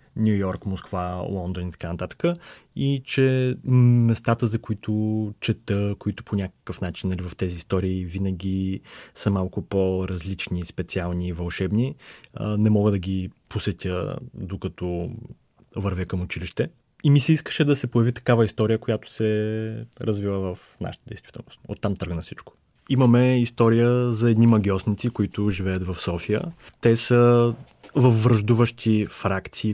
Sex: male